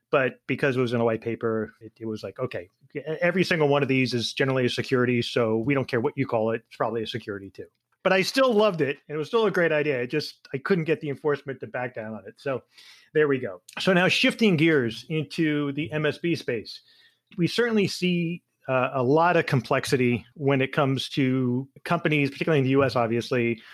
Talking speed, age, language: 225 wpm, 30-49, English